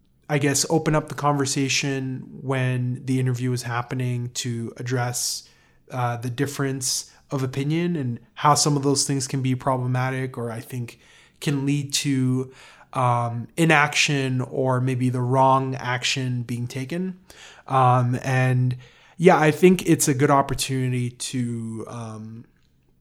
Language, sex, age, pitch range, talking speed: English, male, 20-39, 120-140 Hz, 140 wpm